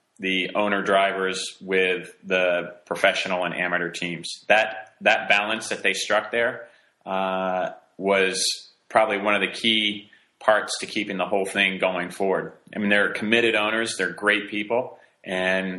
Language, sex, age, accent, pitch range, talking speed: English, male, 30-49, American, 95-105 Hz, 150 wpm